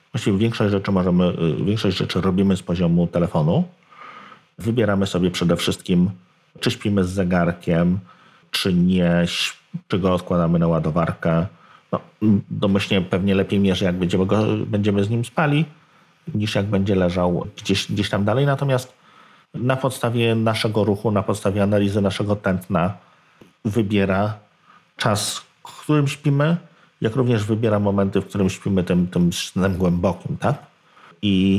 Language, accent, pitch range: Polish, native, 95-115 Hz